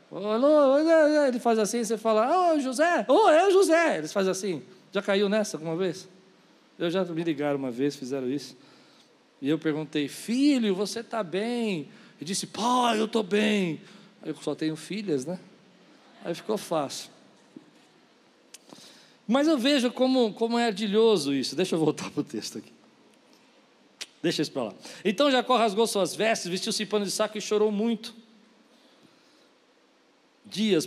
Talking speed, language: 160 wpm, Portuguese